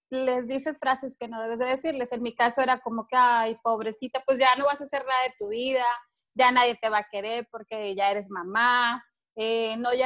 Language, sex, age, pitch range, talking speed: Spanish, female, 20-39, 225-285 Hz, 235 wpm